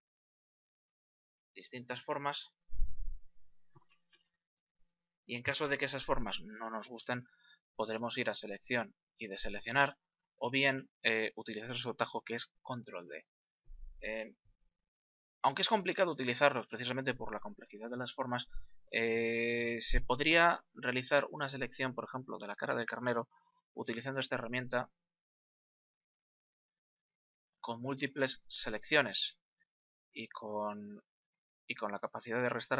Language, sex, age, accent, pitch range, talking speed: Spanish, male, 20-39, Spanish, 115-140 Hz, 125 wpm